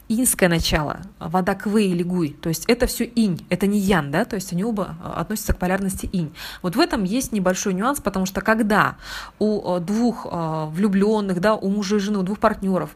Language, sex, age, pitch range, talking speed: Russian, female, 20-39, 175-220 Hz, 200 wpm